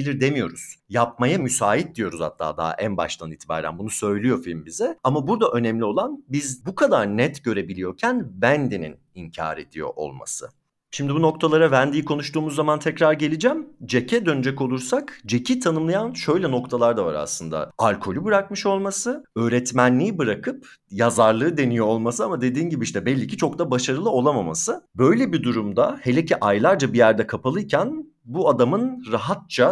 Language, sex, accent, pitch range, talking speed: Turkish, male, native, 115-160 Hz, 150 wpm